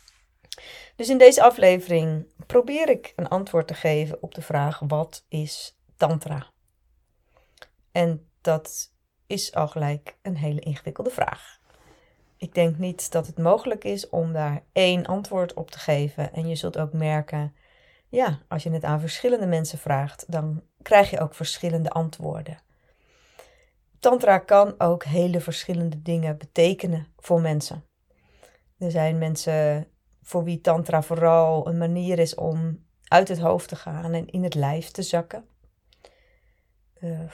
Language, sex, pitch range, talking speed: Dutch, female, 155-180 Hz, 145 wpm